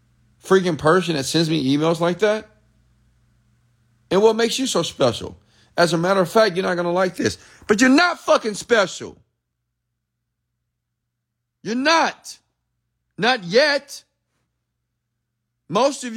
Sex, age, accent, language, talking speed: male, 40-59, American, English, 130 wpm